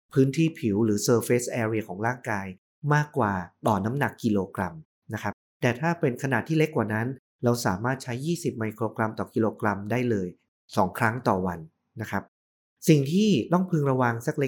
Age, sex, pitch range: 30-49, male, 110-135 Hz